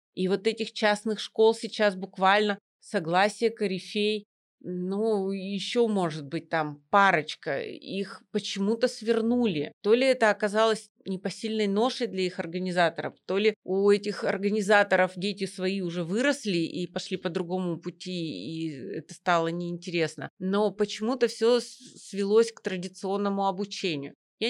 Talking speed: 130 wpm